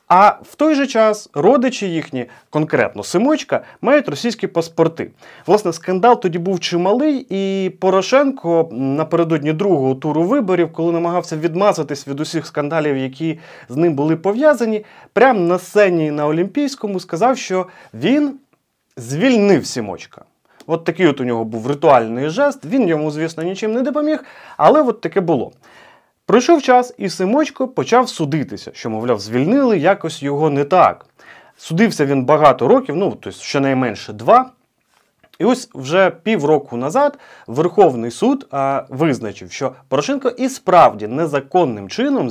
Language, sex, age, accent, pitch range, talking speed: Ukrainian, male, 30-49, native, 150-235 Hz, 140 wpm